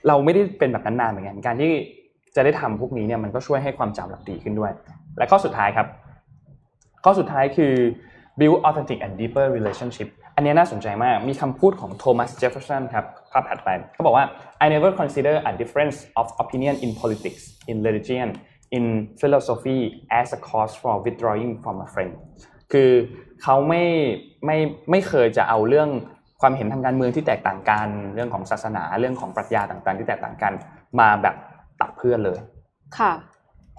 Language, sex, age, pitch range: Thai, male, 20-39, 110-145 Hz